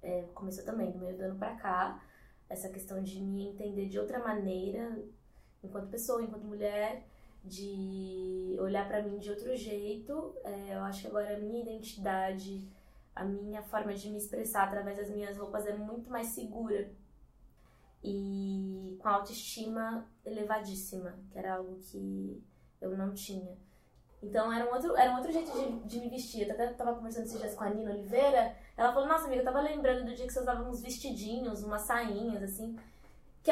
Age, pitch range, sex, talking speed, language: 20-39, 200-250 Hz, female, 180 wpm, Portuguese